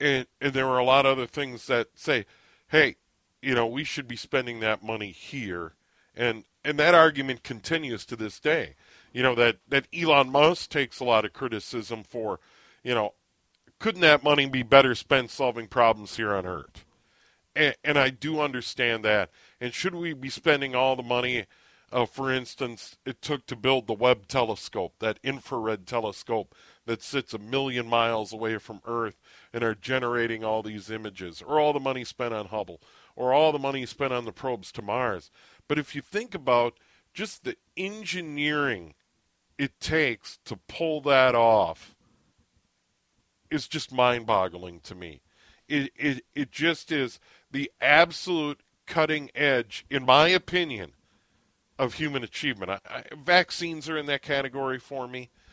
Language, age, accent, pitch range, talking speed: English, 40-59, American, 115-145 Hz, 165 wpm